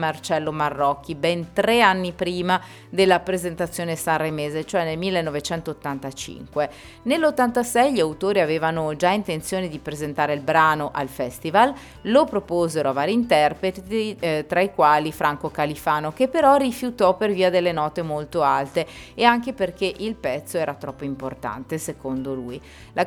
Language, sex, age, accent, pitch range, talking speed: Italian, female, 30-49, native, 150-195 Hz, 145 wpm